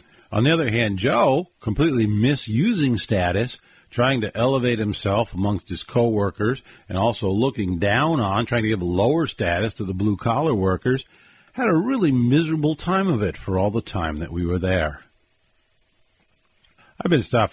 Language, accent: English, American